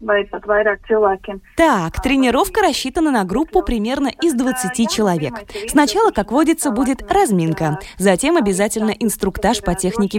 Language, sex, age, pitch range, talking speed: Russian, female, 20-39, 180-255 Hz, 110 wpm